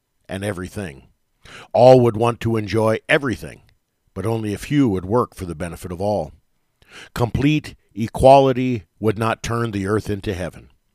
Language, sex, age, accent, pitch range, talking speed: English, male, 50-69, American, 100-120 Hz, 155 wpm